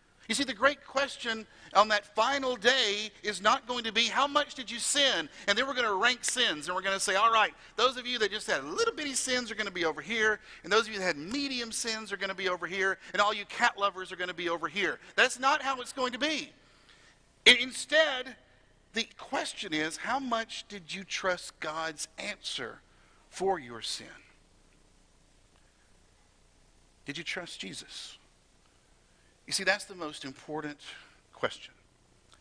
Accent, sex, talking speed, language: American, male, 195 wpm, English